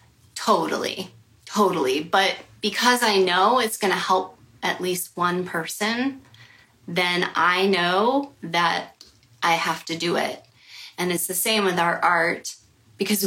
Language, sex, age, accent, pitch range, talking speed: English, female, 20-39, American, 165-205 Hz, 140 wpm